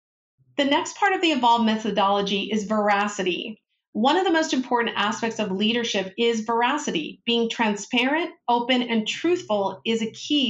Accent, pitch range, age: American, 200-250 Hz, 40-59